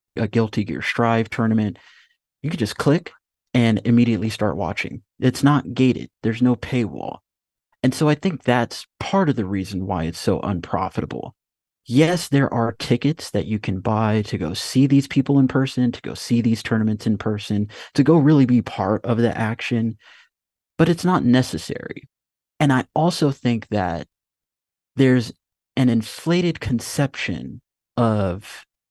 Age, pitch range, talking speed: 30-49, 105-130 Hz, 160 wpm